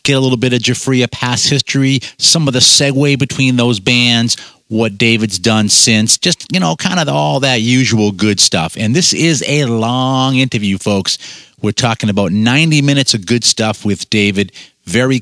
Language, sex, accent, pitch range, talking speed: English, male, American, 110-135 Hz, 185 wpm